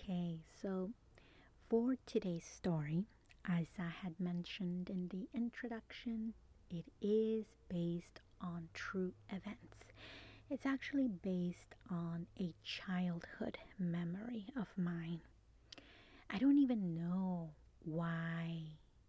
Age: 30-49